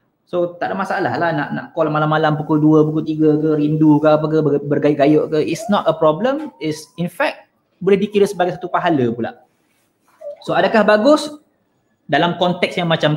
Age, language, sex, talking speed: 20-39, Malay, male, 180 wpm